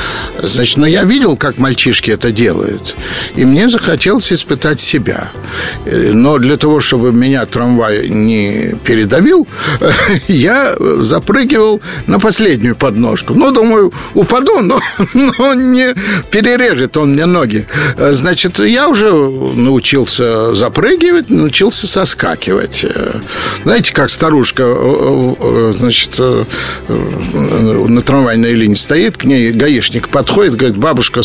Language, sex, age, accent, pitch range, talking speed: Russian, male, 50-69, native, 120-200 Hz, 115 wpm